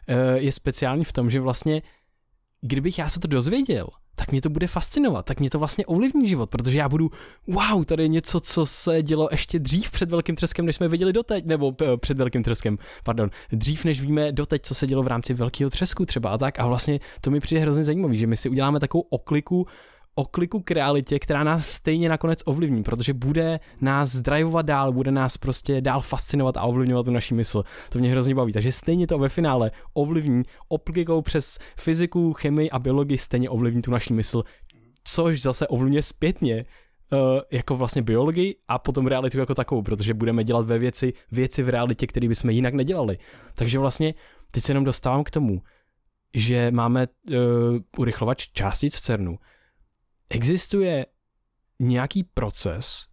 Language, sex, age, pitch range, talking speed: Czech, male, 20-39, 120-150 Hz, 180 wpm